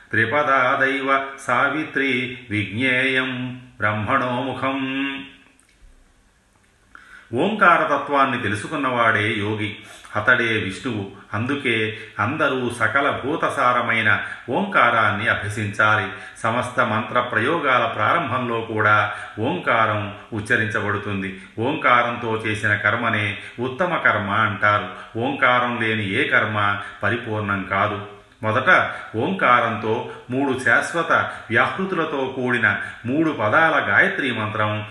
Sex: male